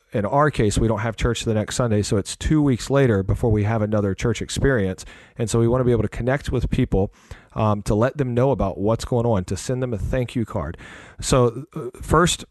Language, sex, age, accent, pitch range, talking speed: English, male, 40-59, American, 100-125 Hz, 240 wpm